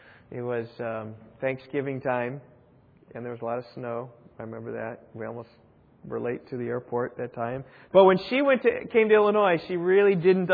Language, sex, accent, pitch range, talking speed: English, male, American, 125-185 Hz, 205 wpm